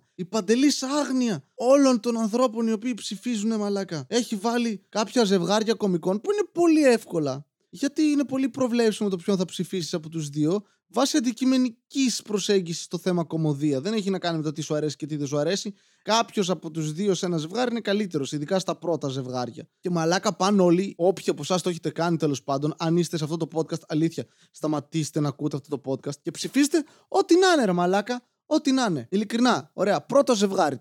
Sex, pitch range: male, 155-220 Hz